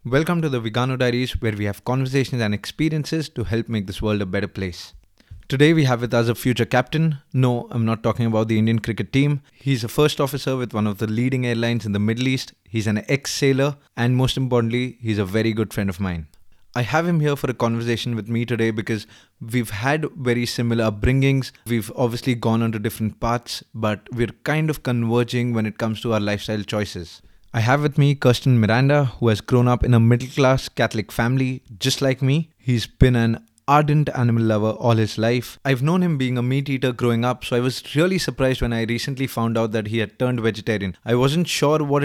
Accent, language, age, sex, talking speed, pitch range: Indian, English, 20-39, male, 215 wpm, 115-130 Hz